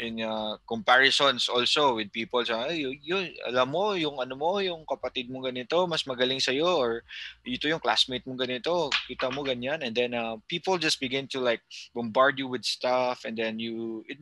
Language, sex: English, male